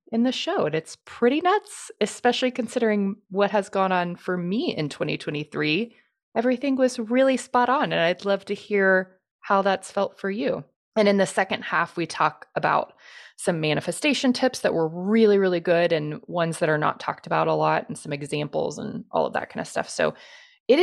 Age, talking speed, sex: 20-39, 200 wpm, female